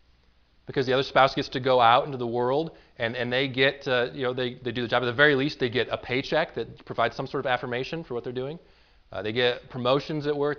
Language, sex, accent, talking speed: English, male, American, 265 wpm